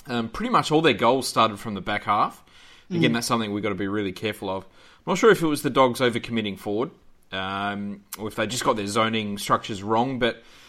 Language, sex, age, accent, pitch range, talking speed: English, male, 20-39, Australian, 100-120 Hz, 240 wpm